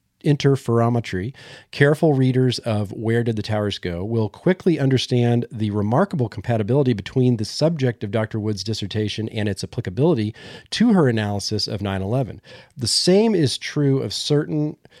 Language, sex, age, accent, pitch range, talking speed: English, male, 40-59, American, 100-130 Hz, 145 wpm